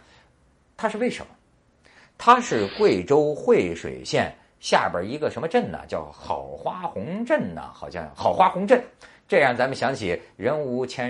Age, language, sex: 50-69, Chinese, male